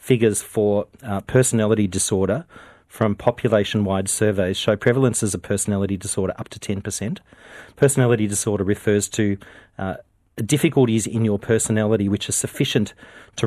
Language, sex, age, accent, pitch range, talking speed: English, male, 40-59, Australian, 100-115 Hz, 135 wpm